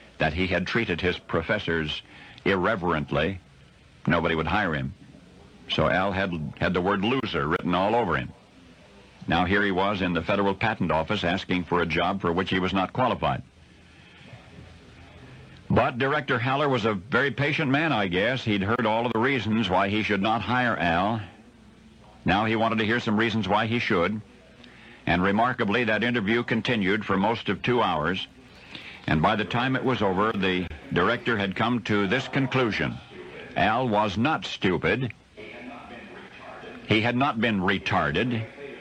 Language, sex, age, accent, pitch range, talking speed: English, male, 60-79, American, 95-125 Hz, 165 wpm